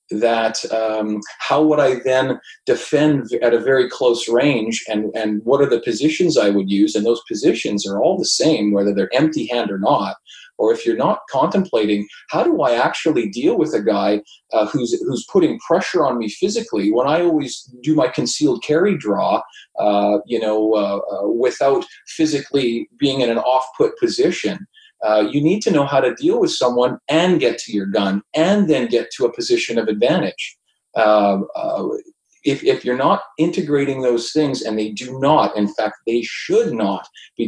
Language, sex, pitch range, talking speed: English, male, 110-170 Hz, 185 wpm